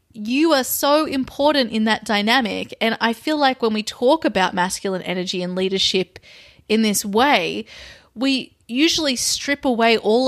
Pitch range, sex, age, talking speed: 200-245 Hz, female, 20-39, 160 wpm